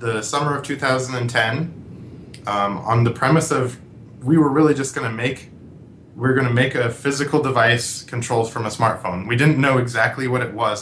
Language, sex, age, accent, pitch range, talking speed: English, male, 20-39, American, 115-145 Hz, 195 wpm